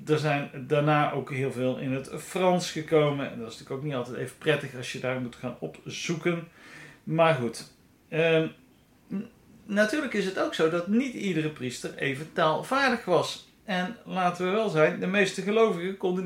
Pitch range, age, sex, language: 145-195 Hz, 40-59, male, Dutch